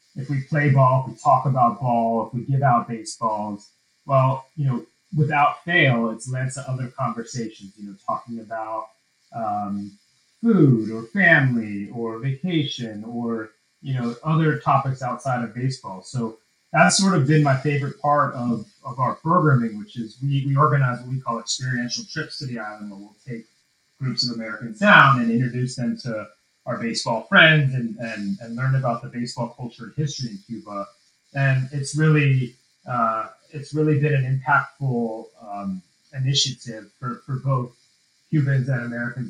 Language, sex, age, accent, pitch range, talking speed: English, male, 30-49, American, 115-145 Hz, 170 wpm